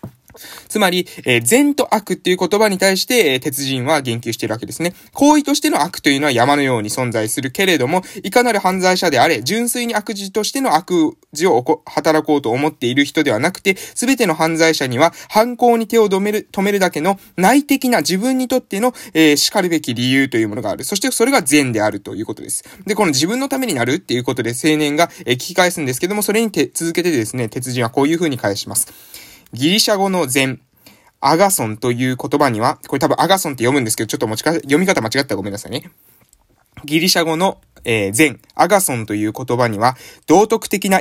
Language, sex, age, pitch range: Japanese, male, 20-39, 125-200 Hz